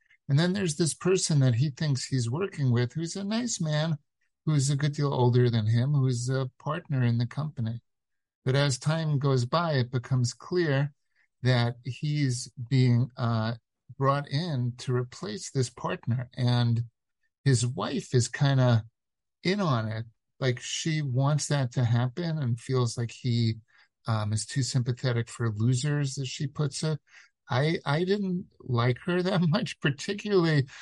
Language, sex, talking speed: English, male, 160 wpm